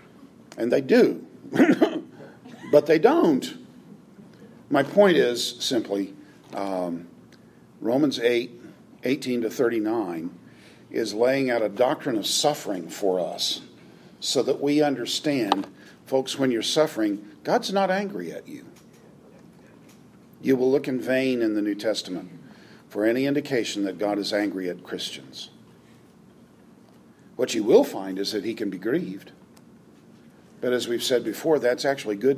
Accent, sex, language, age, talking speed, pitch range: American, male, German, 50-69, 135 wpm, 105-140 Hz